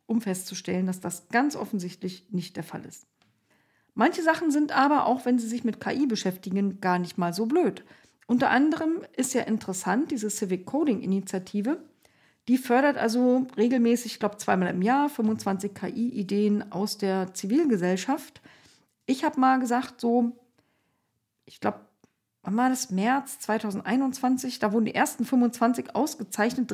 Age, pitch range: 50-69, 200-265 Hz